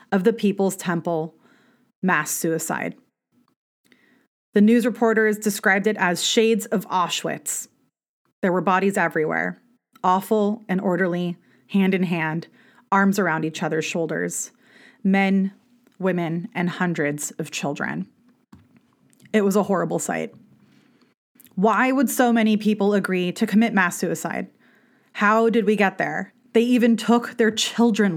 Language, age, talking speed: English, 30-49, 130 wpm